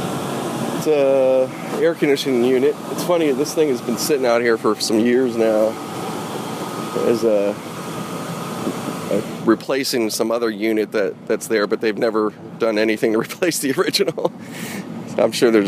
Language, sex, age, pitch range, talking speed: English, male, 30-49, 115-155 Hz, 150 wpm